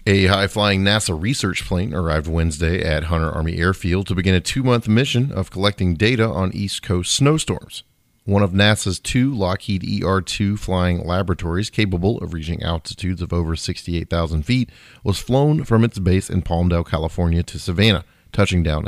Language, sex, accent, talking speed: English, male, American, 165 wpm